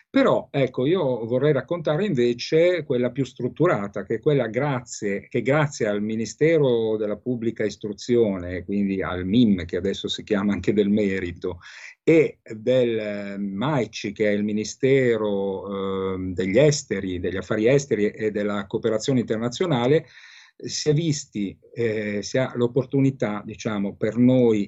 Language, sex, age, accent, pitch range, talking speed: Italian, male, 50-69, native, 105-135 Hz, 140 wpm